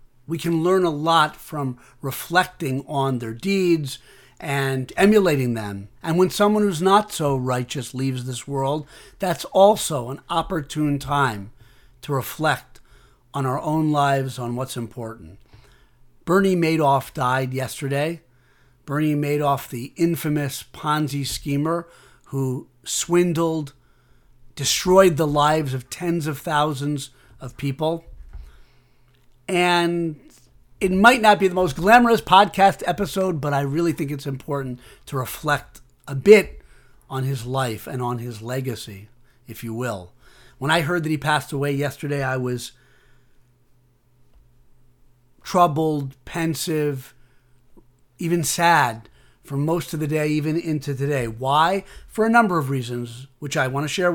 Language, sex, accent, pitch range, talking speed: English, male, American, 125-165 Hz, 135 wpm